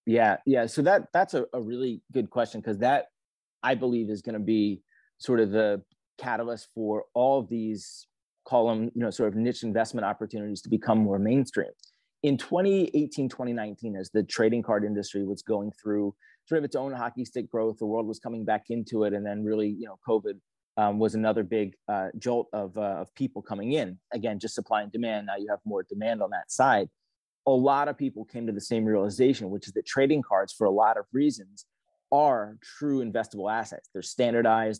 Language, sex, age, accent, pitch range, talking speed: English, male, 30-49, American, 105-125 Hz, 205 wpm